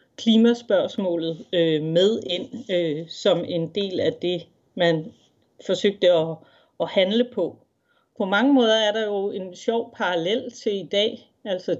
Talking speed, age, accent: 130 wpm, 40-59, native